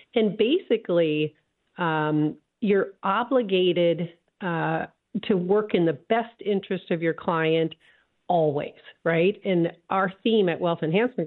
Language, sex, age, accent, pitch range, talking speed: English, female, 50-69, American, 160-215 Hz, 120 wpm